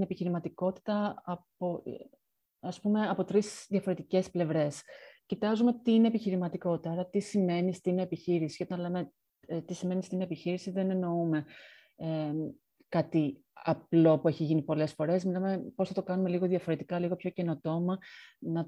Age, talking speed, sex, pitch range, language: 30-49, 135 wpm, female, 165-185 Hz, Greek